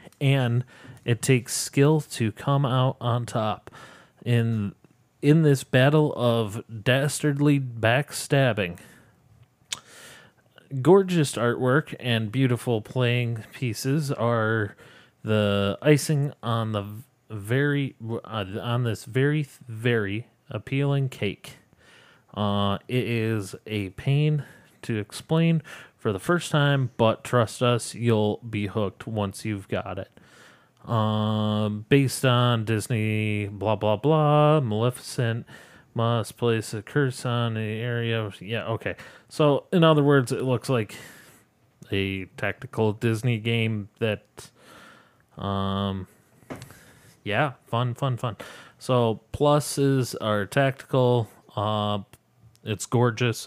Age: 30-49